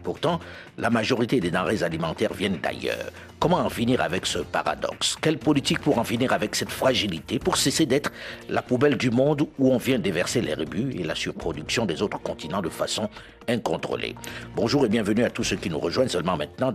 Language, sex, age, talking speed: French, male, 60-79, 195 wpm